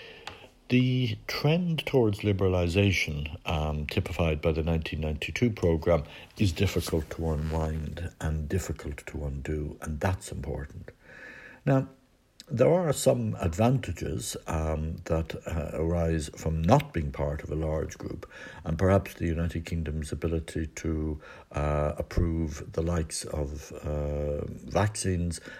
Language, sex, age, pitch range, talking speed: English, male, 60-79, 80-95 Hz, 120 wpm